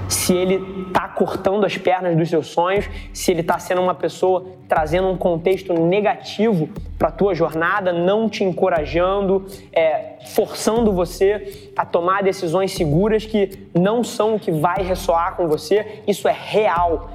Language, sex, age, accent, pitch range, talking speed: Portuguese, male, 20-39, Brazilian, 175-220 Hz, 155 wpm